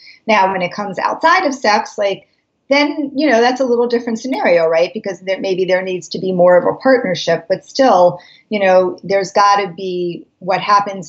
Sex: female